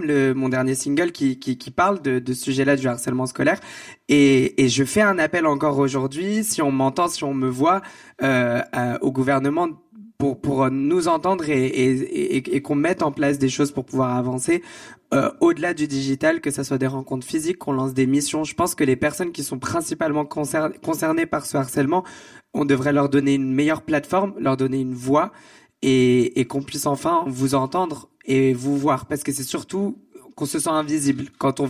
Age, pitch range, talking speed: 20-39, 135-170 Hz, 205 wpm